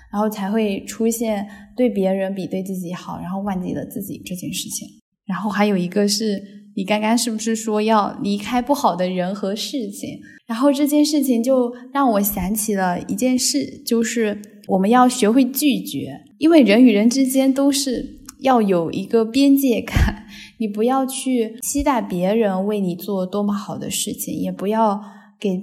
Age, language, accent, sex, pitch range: 10-29, Chinese, native, female, 195-240 Hz